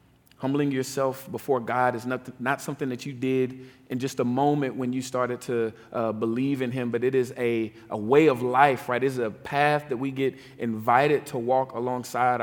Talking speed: 210 wpm